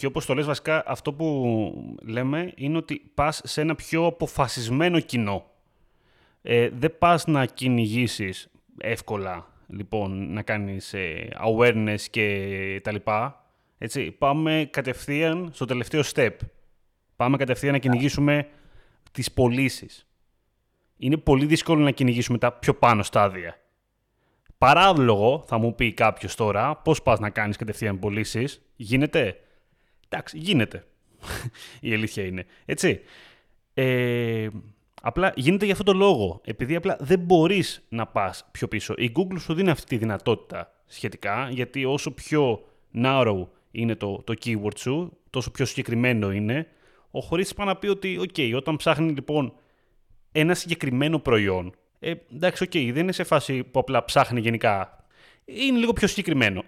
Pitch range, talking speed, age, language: 110-155 Hz, 140 wpm, 20-39, Greek